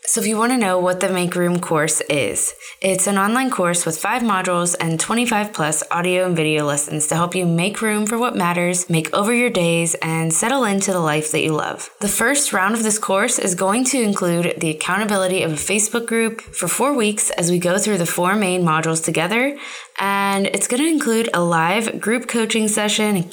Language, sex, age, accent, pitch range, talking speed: English, female, 20-39, American, 170-210 Hz, 220 wpm